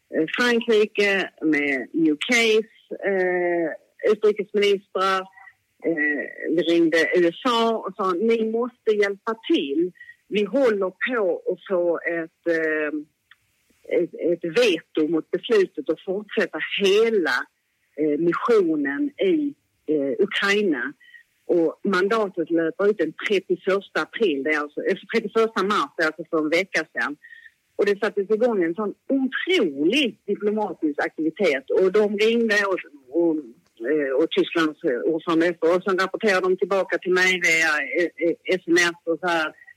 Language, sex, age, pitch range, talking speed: Swedish, female, 40-59, 165-245 Hz, 130 wpm